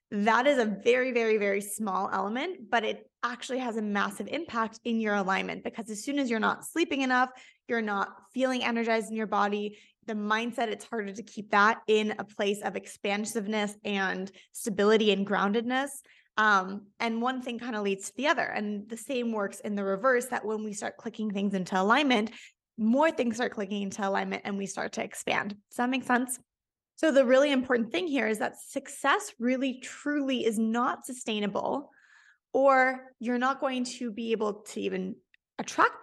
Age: 20-39